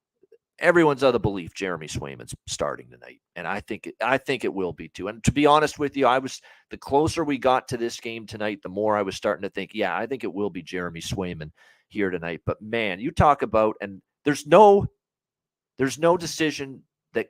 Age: 40-59